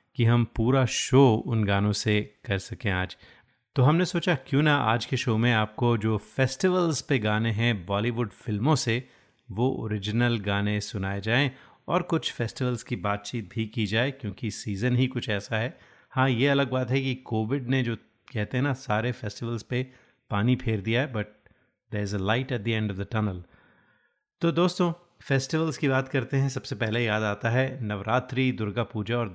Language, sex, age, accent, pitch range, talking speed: Hindi, male, 30-49, native, 105-130 Hz, 190 wpm